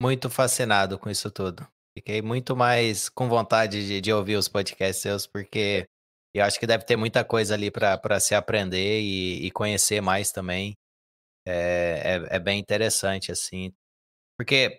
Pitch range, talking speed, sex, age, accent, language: 95-120 Hz, 160 wpm, male, 20-39, Brazilian, Portuguese